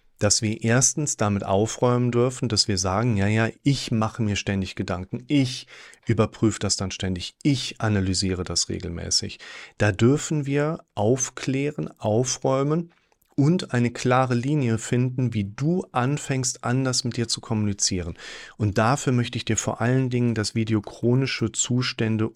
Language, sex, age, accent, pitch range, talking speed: German, male, 40-59, German, 105-130 Hz, 150 wpm